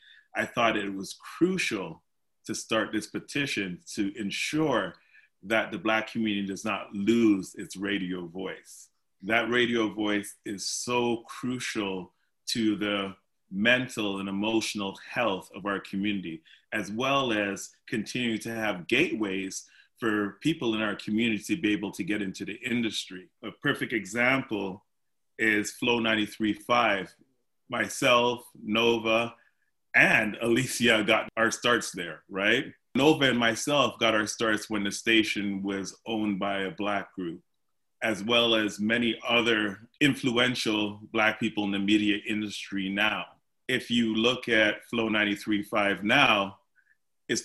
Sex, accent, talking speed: male, American, 135 wpm